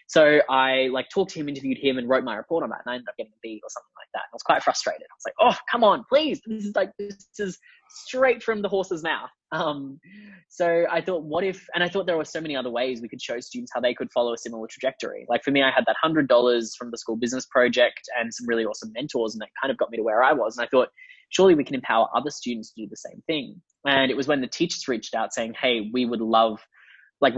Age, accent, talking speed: 10-29, Australian, 280 wpm